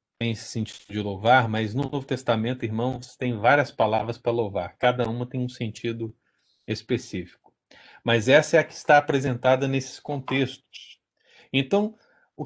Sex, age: male, 40-59